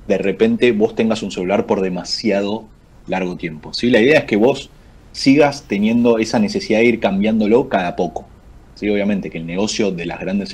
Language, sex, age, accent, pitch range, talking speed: Spanish, male, 30-49, Argentinian, 95-125 Hz, 190 wpm